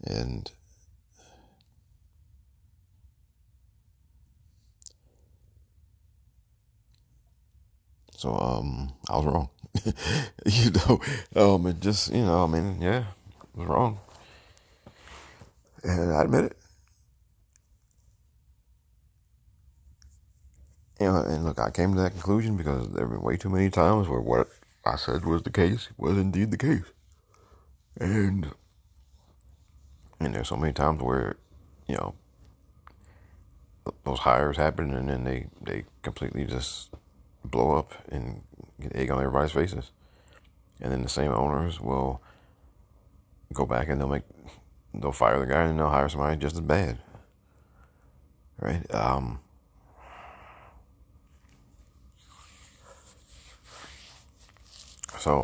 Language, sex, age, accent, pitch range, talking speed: English, male, 50-69, American, 70-95 Hz, 110 wpm